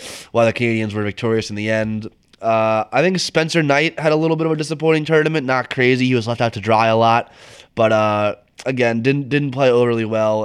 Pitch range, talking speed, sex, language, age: 110-130 Hz, 225 wpm, male, English, 20-39